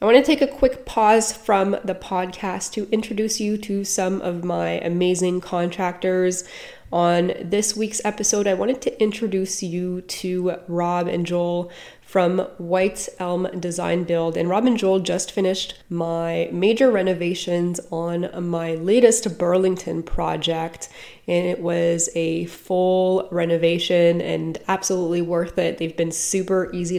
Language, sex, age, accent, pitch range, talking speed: English, female, 20-39, American, 170-190 Hz, 140 wpm